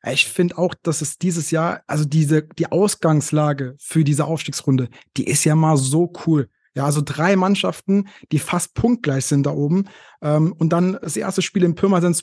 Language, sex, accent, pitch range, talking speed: German, male, German, 145-165 Hz, 185 wpm